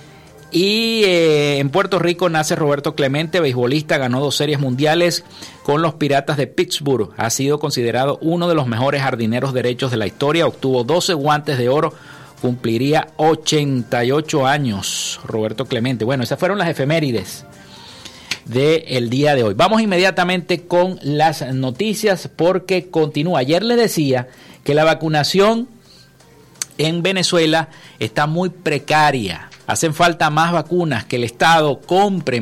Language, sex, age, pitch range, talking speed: Spanish, male, 50-69, 130-170 Hz, 140 wpm